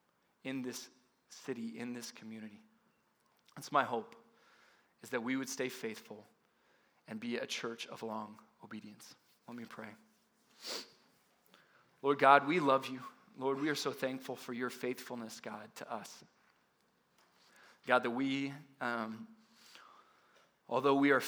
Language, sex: English, male